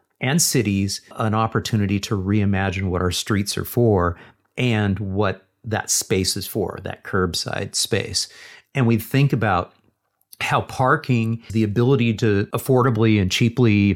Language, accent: English, American